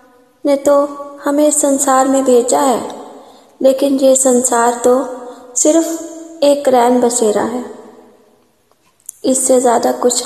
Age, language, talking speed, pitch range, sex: 20-39, Hindi, 110 wpm, 245-285 Hz, female